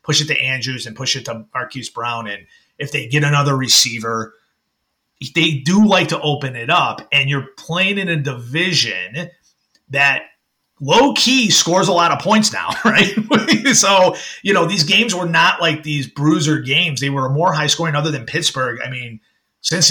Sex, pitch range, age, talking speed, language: male, 120-155 Hz, 30-49, 180 wpm, English